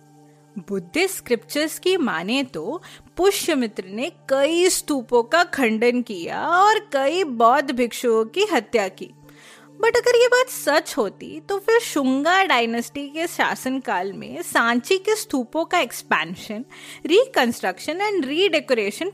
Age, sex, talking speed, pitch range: 30-49, female, 120 wpm, 230-360 Hz